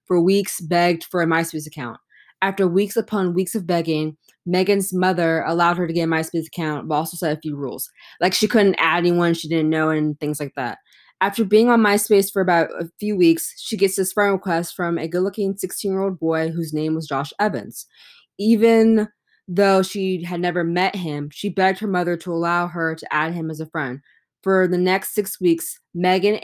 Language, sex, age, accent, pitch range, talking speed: English, female, 20-39, American, 165-195 Hz, 210 wpm